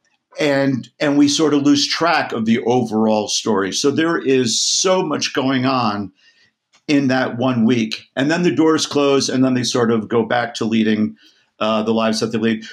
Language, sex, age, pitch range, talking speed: English, male, 50-69, 110-145 Hz, 200 wpm